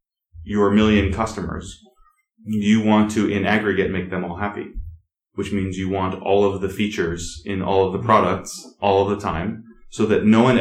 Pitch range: 90-110 Hz